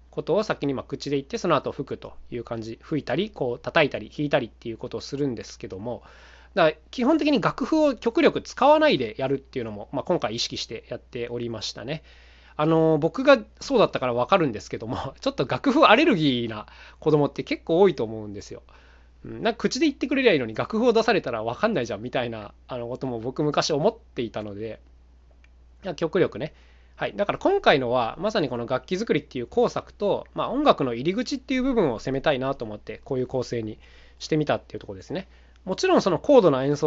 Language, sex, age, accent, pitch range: Japanese, male, 20-39, native, 105-175 Hz